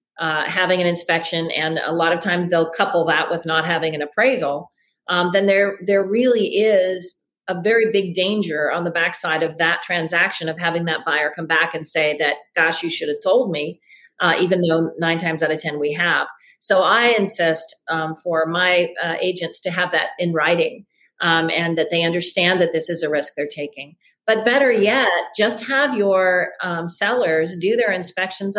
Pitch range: 165-195 Hz